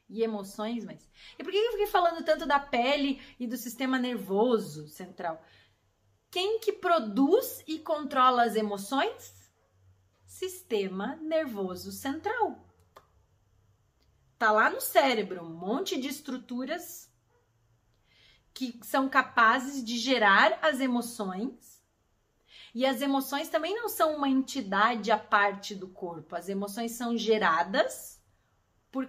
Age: 30-49